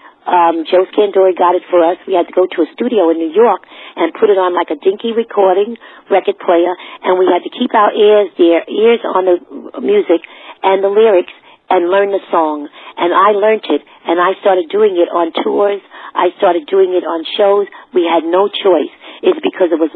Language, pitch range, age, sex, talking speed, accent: English, 180-260 Hz, 50-69, female, 215 wpm, American